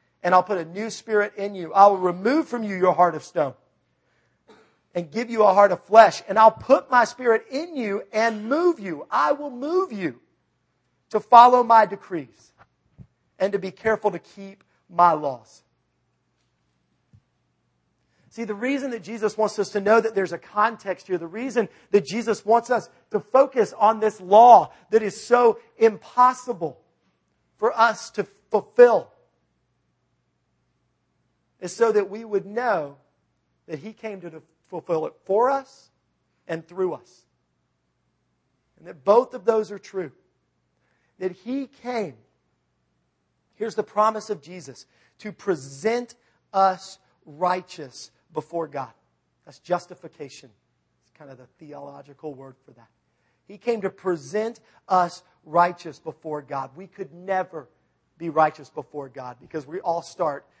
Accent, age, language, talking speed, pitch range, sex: American, 40-59, English, 150 wpm, 145-220 Hz, male